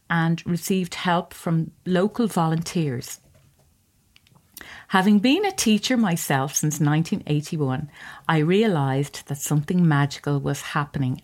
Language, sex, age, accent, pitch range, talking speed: English, female, 40-59, Irish, 155-215 Hz, 105 wpm